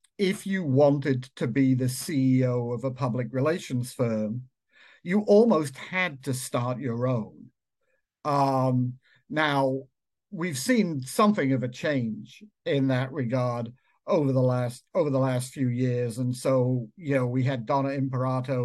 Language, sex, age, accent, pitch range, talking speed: English, male, 60-79, British, 125-140 Hz, 150 wpm